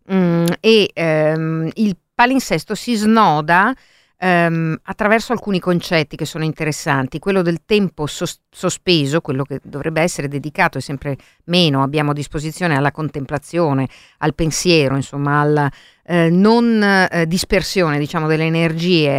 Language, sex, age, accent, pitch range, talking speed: Italian, female, 50-69, native, 145-185 Hz, 135 wpm